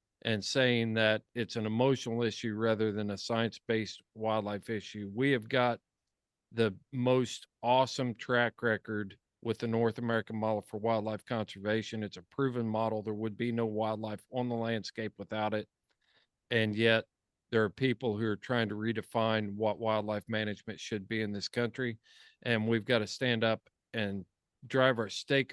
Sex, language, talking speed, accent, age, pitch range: male, English, 165 wpm, American, 40-59, 110-130 Hz